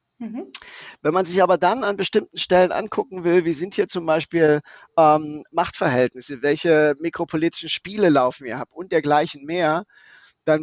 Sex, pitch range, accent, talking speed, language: male, 150-185 Hz, German, 155 wpm, German